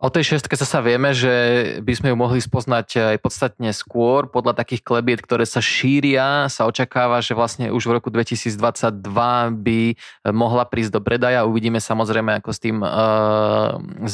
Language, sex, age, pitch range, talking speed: Slovak, male, 20-39, 115-125 Hz, 170 wpm